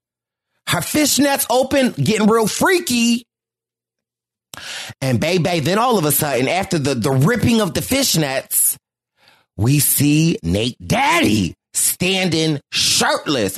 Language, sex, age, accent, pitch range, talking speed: English, male, 30-49, American, 145-240 Hz, 115 wpm